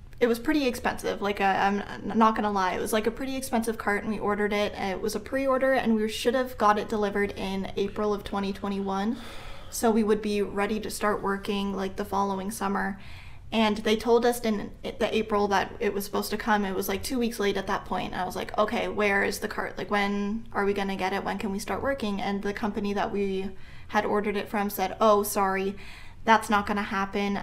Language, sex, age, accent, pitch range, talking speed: English, female, 10-29, American, 200-225 Hz, 230 wpm